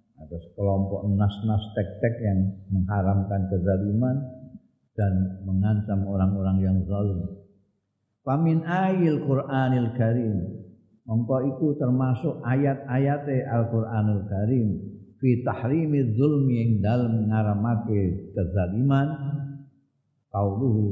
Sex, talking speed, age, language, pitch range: male, 85 wpm, 50-69, Indonesian, 100-135 Hz